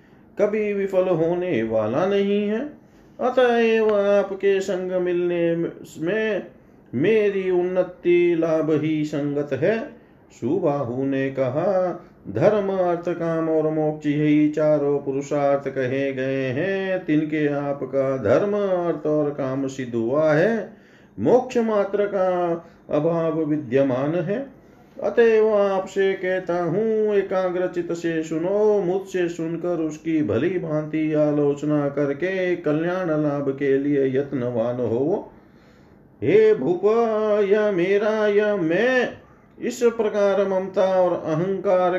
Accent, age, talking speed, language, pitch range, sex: native, 40-59, 105 wpm, Hindi, 150-195 Hz, male